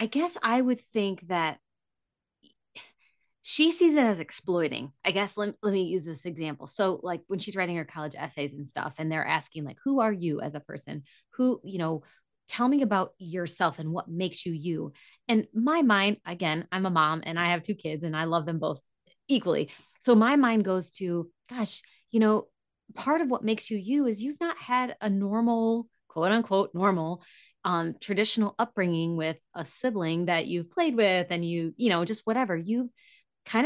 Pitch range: 165-220 Hz